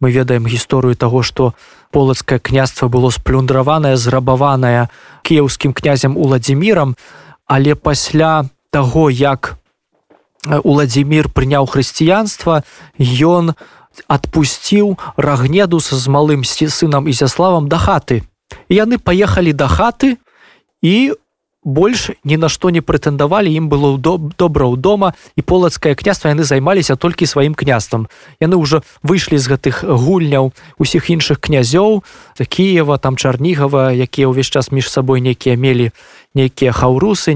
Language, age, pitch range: Polish, 20-39, 130-165 Hz